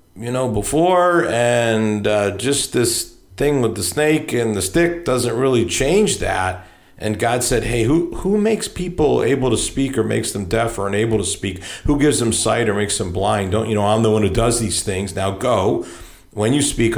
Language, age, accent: English, 50-69, American